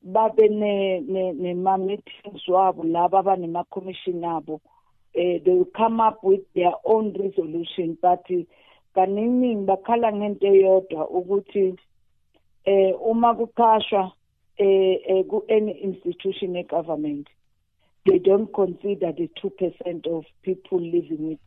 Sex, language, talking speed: female, English, 50 wpm